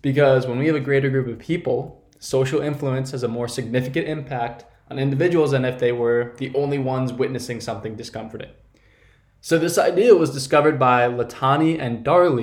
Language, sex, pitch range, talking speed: English, male, 120-145 Hz, 180 wpm